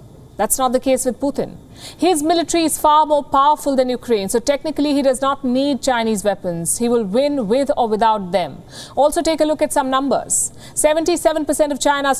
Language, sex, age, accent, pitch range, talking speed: English, female, 50-69, Indian, 230-290 Hz, 190 wpm